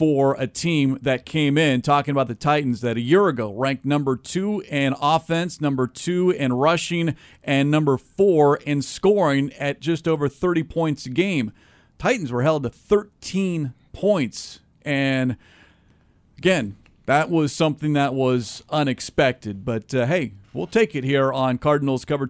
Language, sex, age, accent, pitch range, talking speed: English, male, 40-59, American, 130-160 Hz, 160 wpm